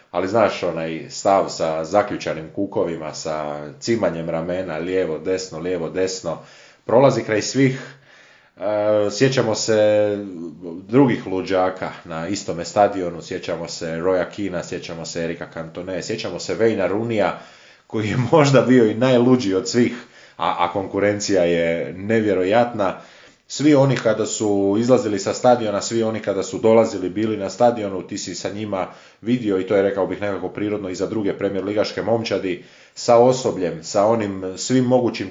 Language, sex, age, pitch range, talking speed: Croatian, male, 20-39, 90-115 Hz, 150 wpm